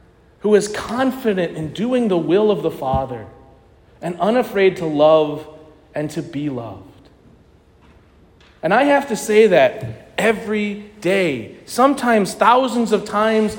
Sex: male